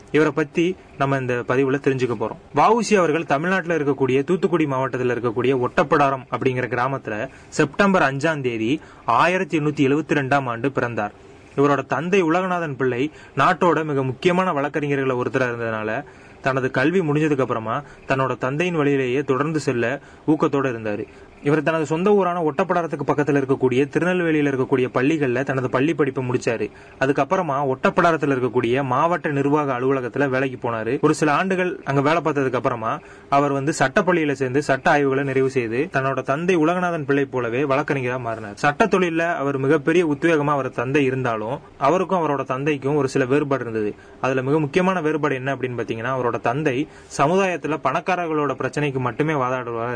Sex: male